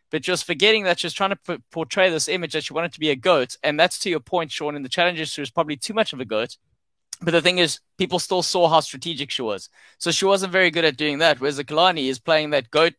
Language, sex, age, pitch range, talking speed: English, male, 20-39, 135-175 Hz, 275 wpm